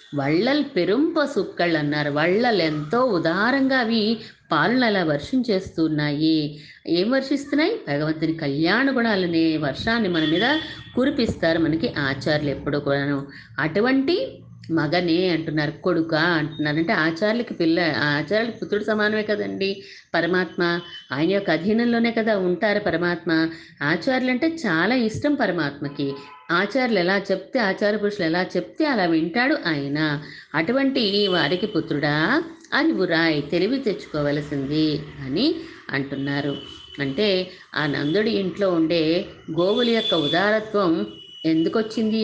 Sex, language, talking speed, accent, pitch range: female, Telugu, 100 wpm, native, 160-230 Hz